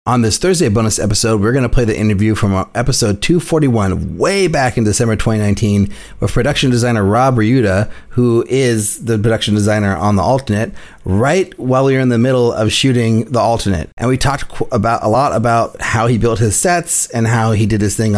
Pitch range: 110-130 Hz